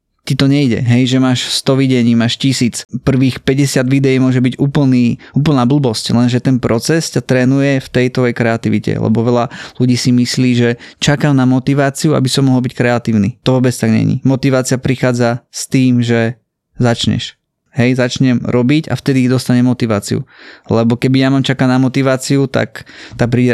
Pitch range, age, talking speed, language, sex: 120-140 Hz, 20-39, 175 wpm, Slovak, male